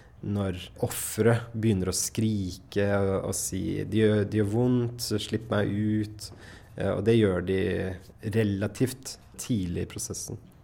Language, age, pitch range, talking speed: Danish, 20-39, 100-115 Hz, 135 wpm